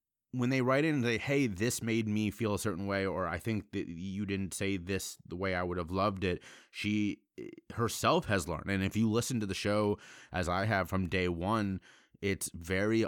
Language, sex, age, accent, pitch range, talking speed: English, male, 30-49, American, 90-105 Hz, 220 wpm